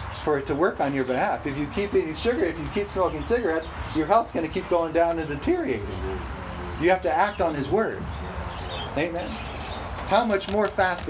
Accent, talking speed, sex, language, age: American, 205 wpm, male, English, 40-59